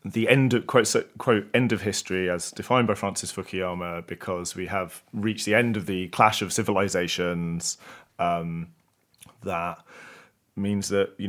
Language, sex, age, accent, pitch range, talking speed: English, male, 30-49, British, 85-105 Hz, 155 wpm